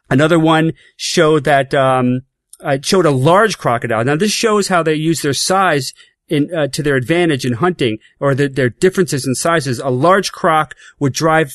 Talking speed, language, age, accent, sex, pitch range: 185 wpm, English, 40-59, American, male, 130-175 Hz